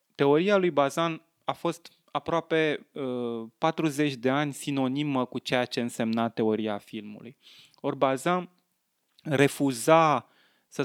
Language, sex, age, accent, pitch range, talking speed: Romanian, male, 20-39, native, 120-150 Hz, 110 wpm